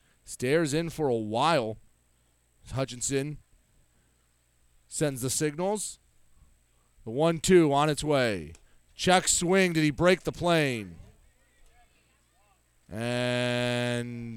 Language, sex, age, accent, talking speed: English, male, 30-49, American, 90 wpm